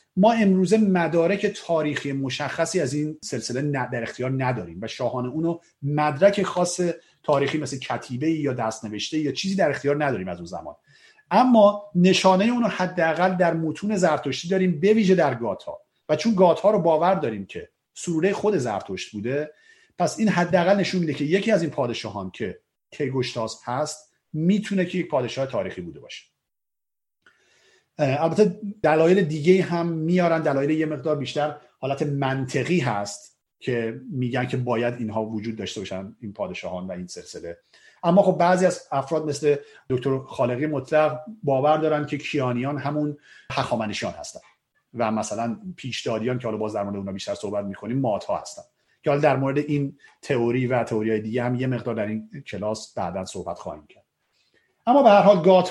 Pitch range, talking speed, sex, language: 125-185 Hz, 165 wpm, male, Persian